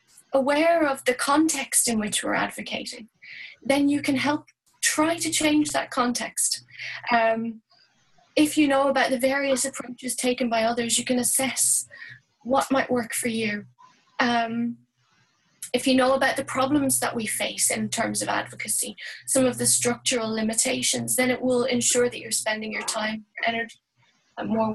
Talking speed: 165 wpm